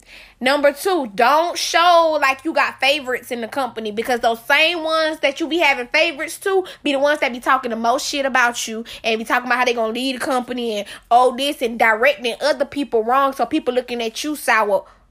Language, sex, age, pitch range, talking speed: English, female, 10-29, 260-330 Hz, 225 wpm